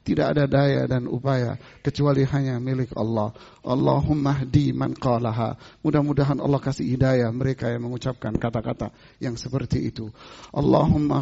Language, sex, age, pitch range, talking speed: Indonesian, male, 50-69, 130-150 Hz, 135 wpm